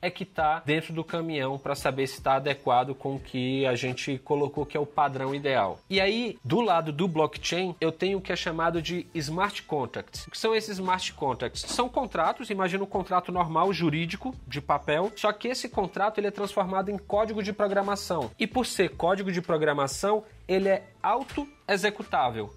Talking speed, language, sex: 190 wpm, Portuguese, male